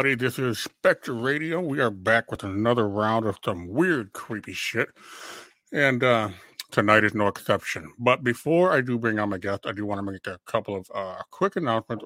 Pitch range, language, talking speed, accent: 105-125 Hz, English, 200 wpm, American